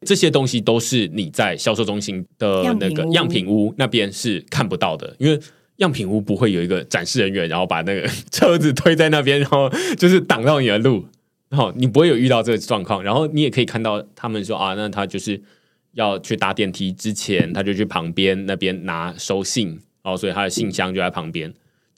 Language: Chinese